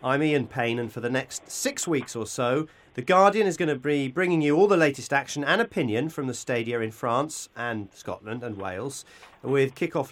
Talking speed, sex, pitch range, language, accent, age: 215 wpm, male, 120-155 Hz, English, British, 40-59